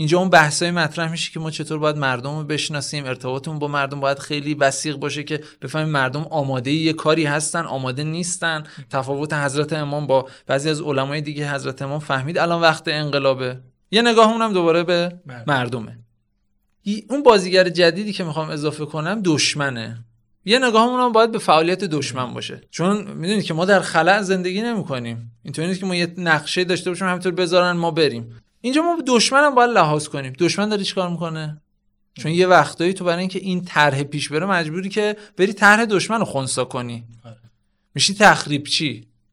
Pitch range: 140-190 Hz